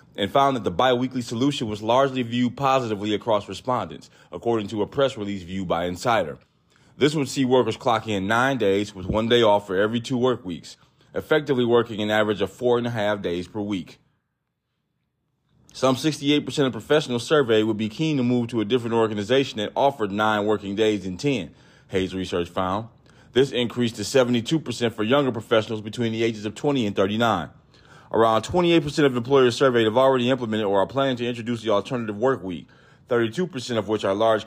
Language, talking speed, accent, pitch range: English, 190 wpm, American, 105-130 Hz